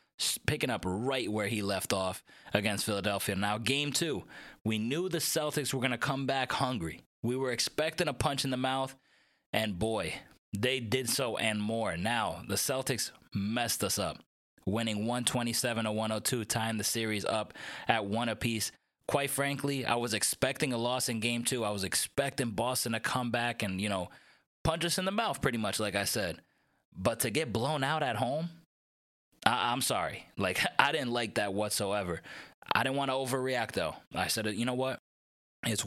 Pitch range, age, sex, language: 105-135 Hz, 20-39, male, English